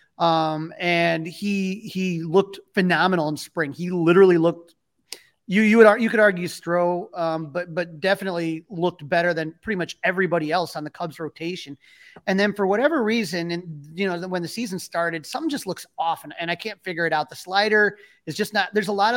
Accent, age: American, 30-49